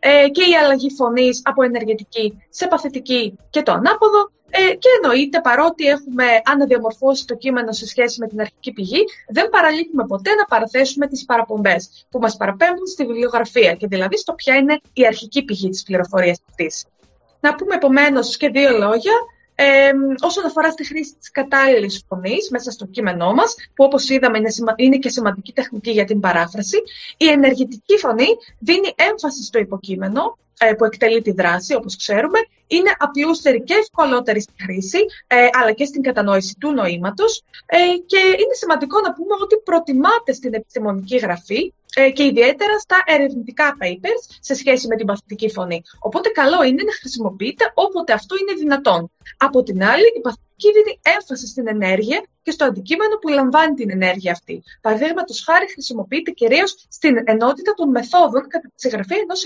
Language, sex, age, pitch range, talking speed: Greek, female, 20-39, 225-335 Hz, 160 wpm